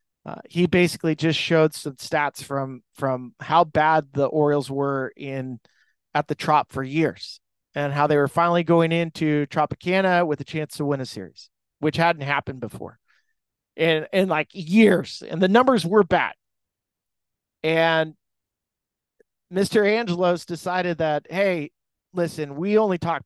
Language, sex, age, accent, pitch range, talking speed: English, male, 40-59, American, 150-215 Hz, 145 wpm